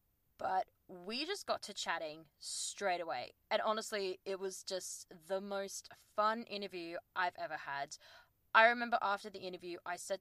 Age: 20-39